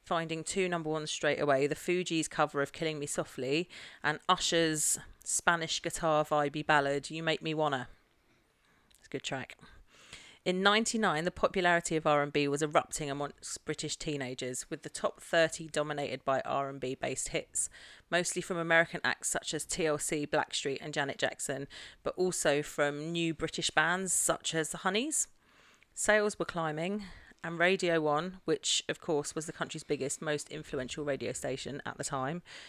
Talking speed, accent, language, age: 160 wpm, British, English, 30-49